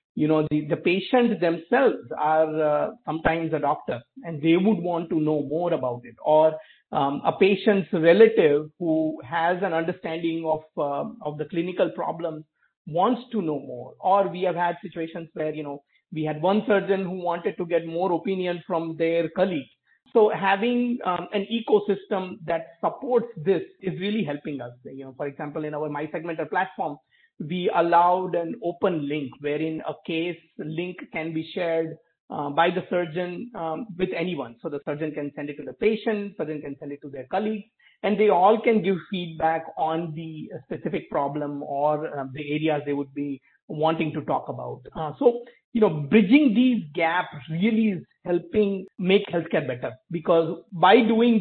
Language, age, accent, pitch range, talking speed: English, 50-69, Indian, 155-200 Hz, 175 wpm